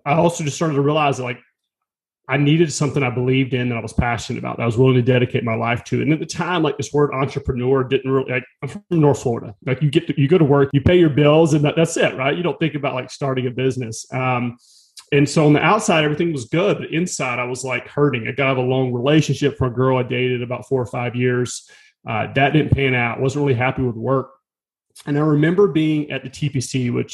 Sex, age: male, 30-49